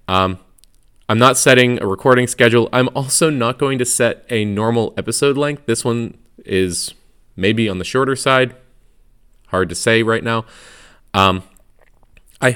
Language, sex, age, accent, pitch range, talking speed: English, male, 20-39, American, 95-130 Hz, 155 wpm